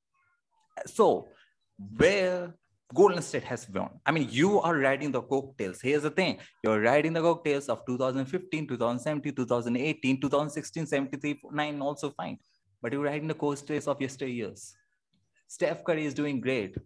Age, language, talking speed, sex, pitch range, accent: 20-39, English, 145 wpm, male, 115-155 Hz, Indian